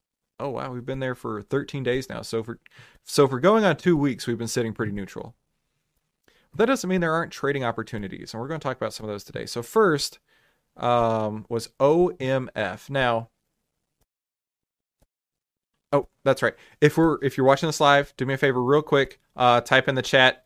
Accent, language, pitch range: American, English, 115-145 Hz